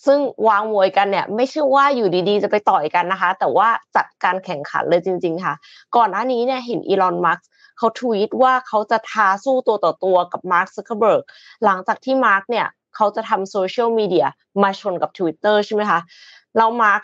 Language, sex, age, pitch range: Thai, female, 20-39, 190-255 Hz